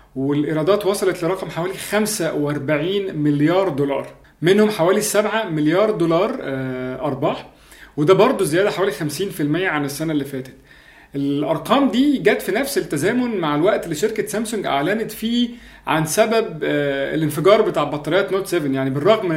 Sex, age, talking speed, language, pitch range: male, 30-49, 135 wpm, Arabic, 150-210 Hz